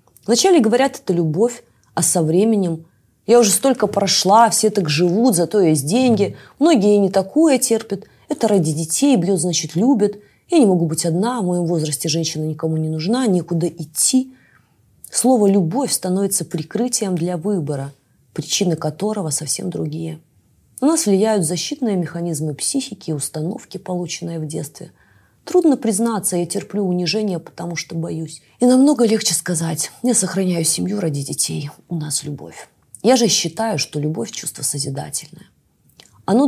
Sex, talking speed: female, 150 wpm